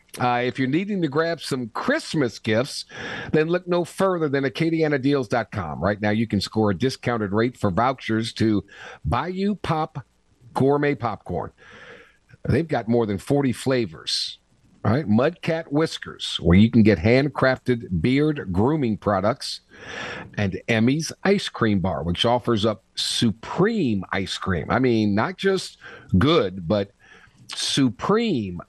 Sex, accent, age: male, American, 50-69